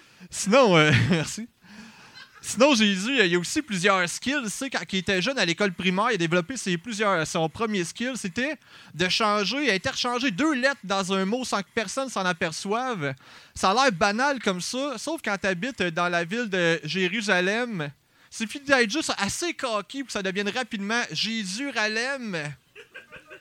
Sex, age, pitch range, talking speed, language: male, 30-49, 180-255 Hz, 175 wpm, French